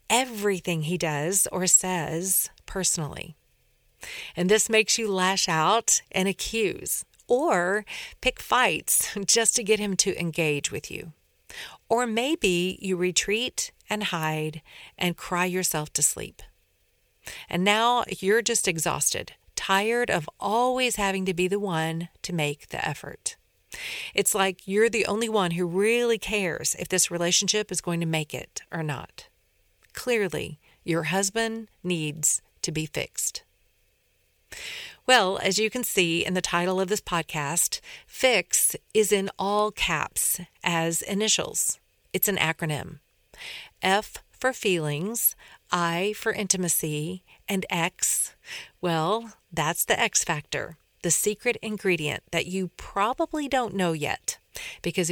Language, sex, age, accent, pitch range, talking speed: English, female, 40-59, American, 165-210 Hz, 135 wpm